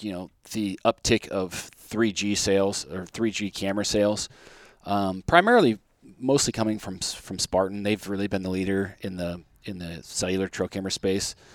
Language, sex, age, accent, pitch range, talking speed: English, male, 30-49, American, 90-105 Hz, 160 wpm